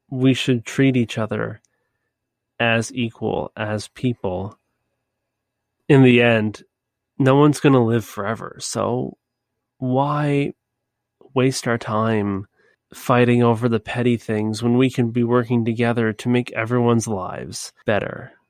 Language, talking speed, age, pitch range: English, 125 wpm, 30-49, 110-125 Hz